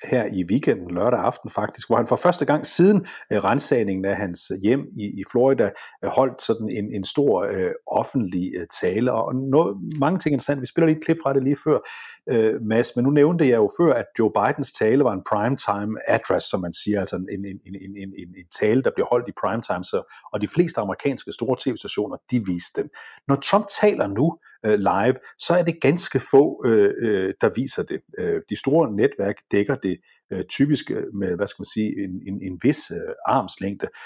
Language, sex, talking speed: Danish, male, 200 wpm